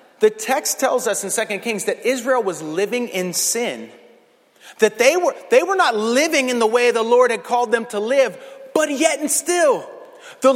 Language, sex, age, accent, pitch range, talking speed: English, male, 30-49, American, 215-315 Hz, 200 wpm